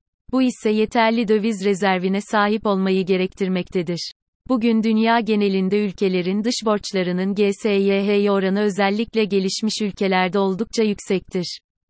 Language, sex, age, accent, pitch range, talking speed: Turkish, female, 30-49, native, 190-220 Hz, 105 wpm